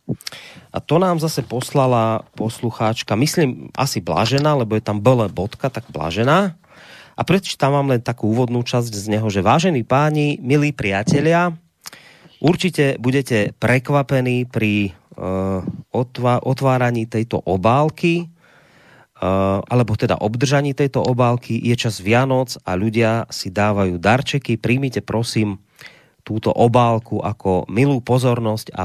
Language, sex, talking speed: Slovak, male, 125 wpm